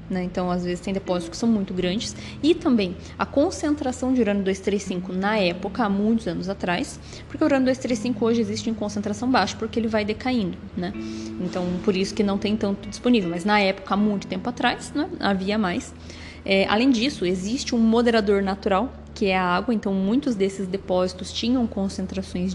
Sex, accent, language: female, Brazilian, Portuguese